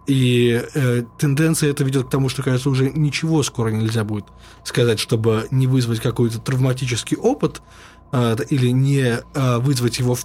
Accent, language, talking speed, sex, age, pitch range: native, Russian, 165 wpm, male, 20-39, 125-155 Hz